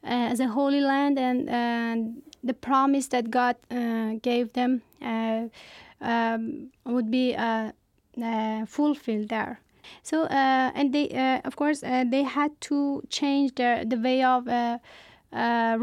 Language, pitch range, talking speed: Persian, 235-265 Hz, 150 wpm